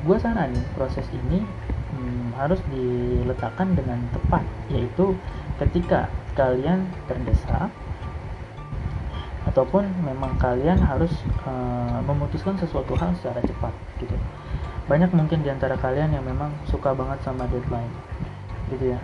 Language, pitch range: Indonesian, 110-140 Hz